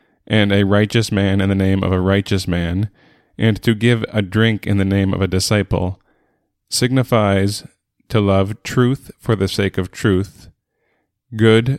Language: English